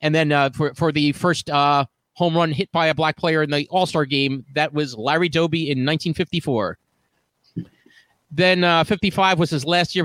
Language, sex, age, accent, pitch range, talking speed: English, male, 30-49, American, 155-195 Hz, 190 wpm